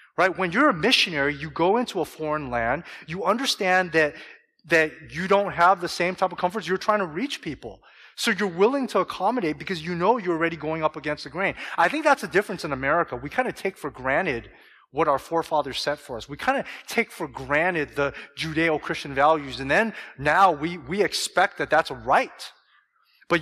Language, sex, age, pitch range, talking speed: English, male, 30-49, 150-195 Hz, 210 wpm